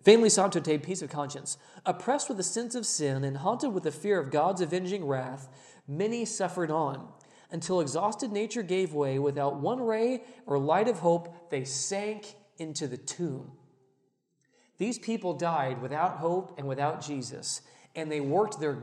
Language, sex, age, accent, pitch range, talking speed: English, male, 40-59, American, 140-205 Hz, 170 wpm